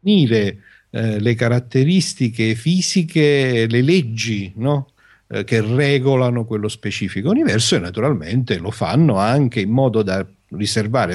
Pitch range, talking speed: 95-130 Hz, 125 wpm